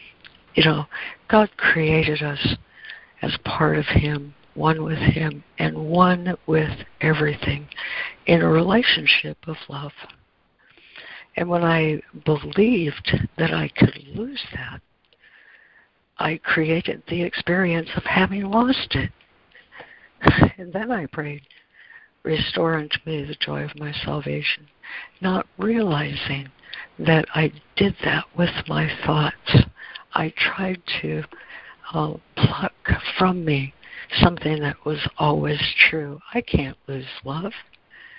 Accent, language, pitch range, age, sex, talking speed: American, English, 150-190 Hz, 60-79, female, 120 wpm